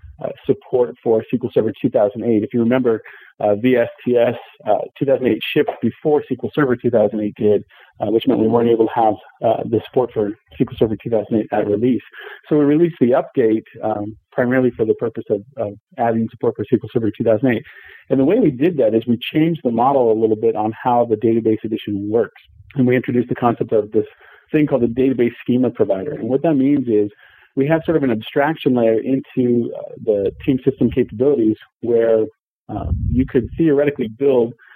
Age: 40-59